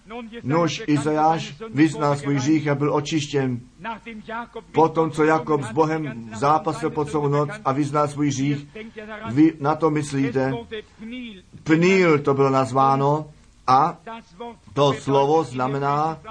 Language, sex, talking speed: Czech, male, 120 wpm